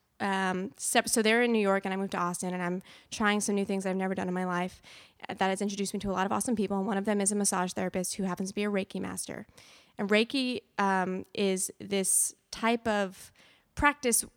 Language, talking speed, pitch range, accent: English, 235 wpm, 185-220 Hz, American